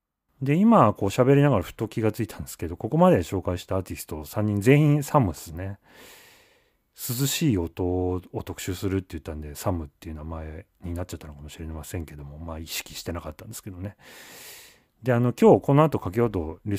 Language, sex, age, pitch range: Japanese, male, 30-49, 85-135 Hz